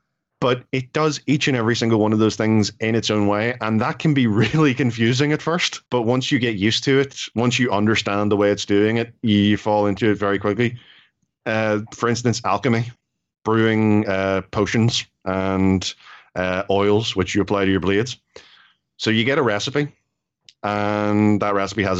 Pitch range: 105-120 Hz